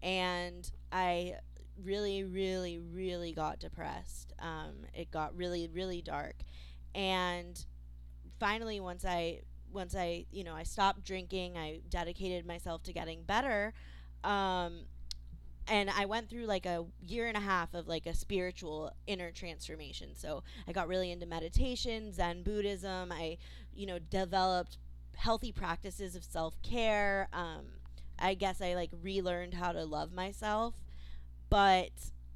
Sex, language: female, English